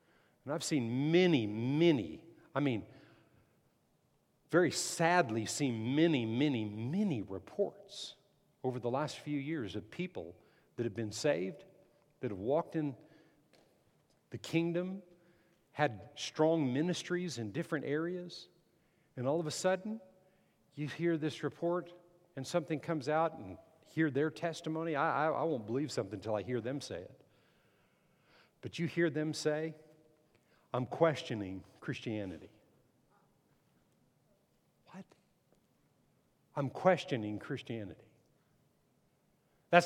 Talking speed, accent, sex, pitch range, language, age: 120 wpm, American, male, 135-175 Hz, English, 50-69